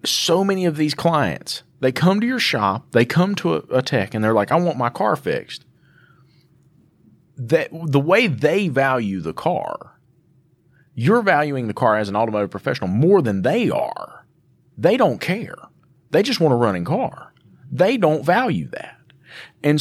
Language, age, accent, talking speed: English, 40-59, American, 170 wpm